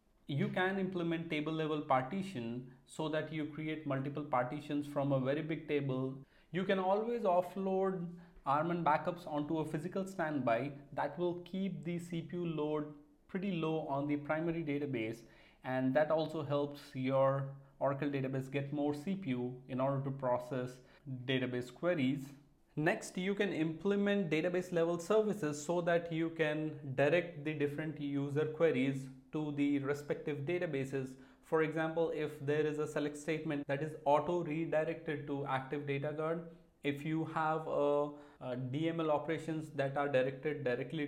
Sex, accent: male, Indian